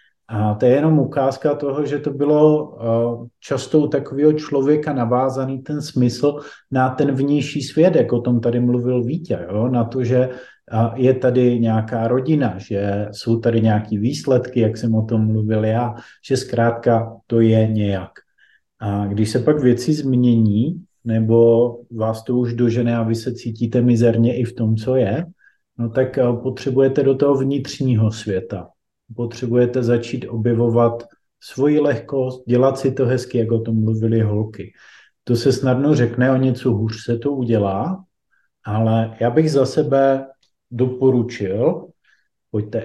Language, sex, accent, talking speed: Czech, male, native, 150 wpm